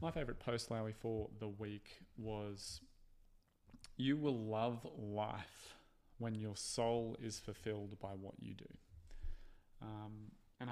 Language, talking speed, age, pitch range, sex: English, 125 wpm, 20-39, 95-110 Hz, male